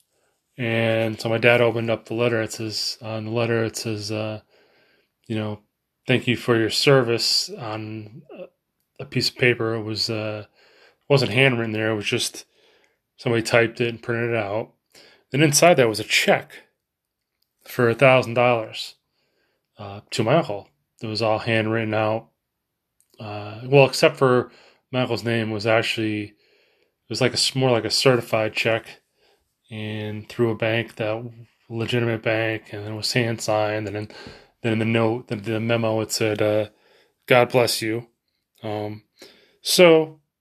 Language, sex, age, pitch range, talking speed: English, male, 20-39, 110-120 Hz, 165 wpm